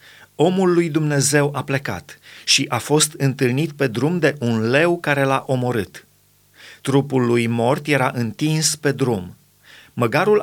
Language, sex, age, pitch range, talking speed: Romanian, male, 30-49, 120-155 Hz, 145 wpm